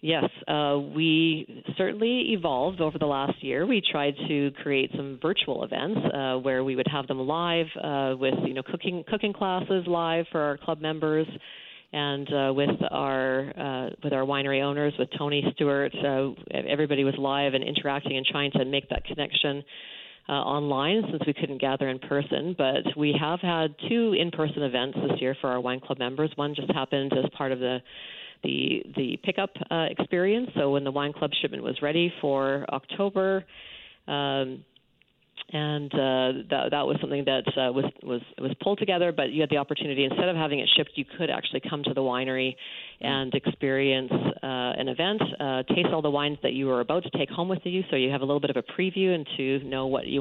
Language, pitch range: English, 135-165 Hz